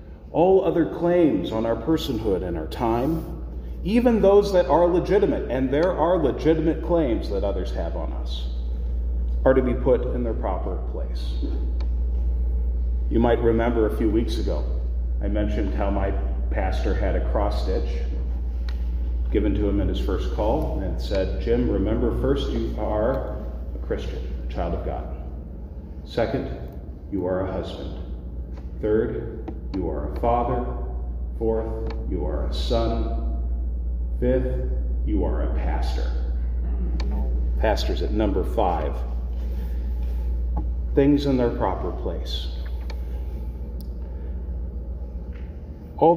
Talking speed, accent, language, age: 125 wpm, American, English, 40-59